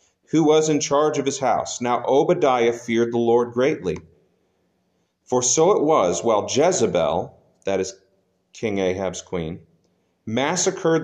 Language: English